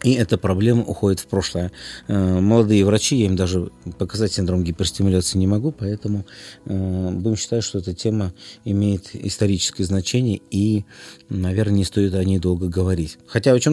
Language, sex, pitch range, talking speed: Russian, male, 95-125 Hz, 155 wpm